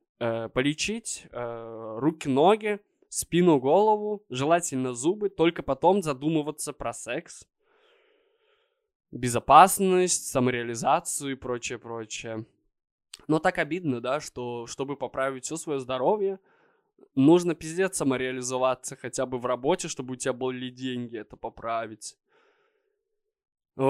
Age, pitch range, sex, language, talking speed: 20-39, 130-200 Hz, male, Russian, 105 wpm